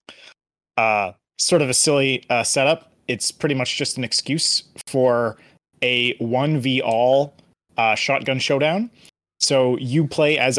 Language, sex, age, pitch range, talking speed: English, male, 30-49, 110-140 Hz, 130 wpm